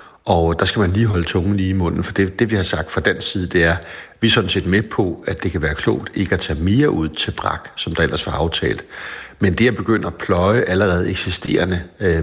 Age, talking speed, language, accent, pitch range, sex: 60-79, 270 wpm, Danish, native, 85-105 Hz, male